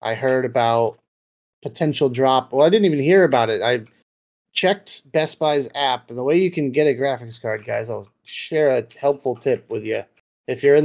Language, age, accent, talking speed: English, 30-49, American, 205 wpm